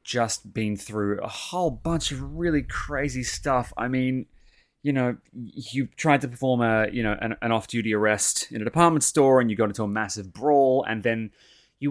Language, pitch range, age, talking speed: English, 105-140 Hz, 20-39, 195 wpm